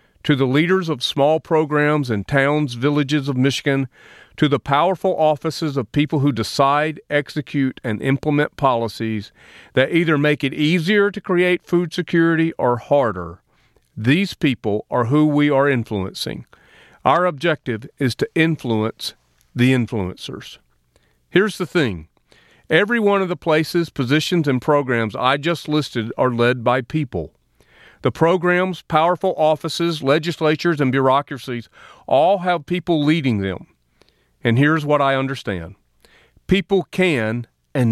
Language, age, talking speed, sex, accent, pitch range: English, 40-59, 135 wpm, male, American, 120-160 Hz